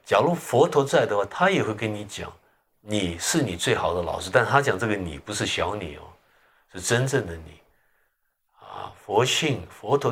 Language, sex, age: Chinese, male, 50-69